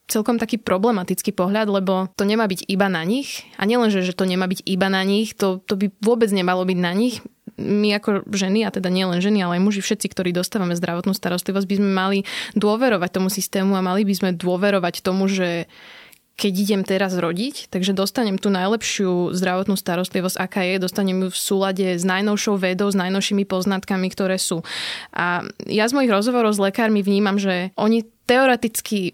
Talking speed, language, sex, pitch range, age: 185 wpm, Slovak, female, 185-215 Hz, 20-39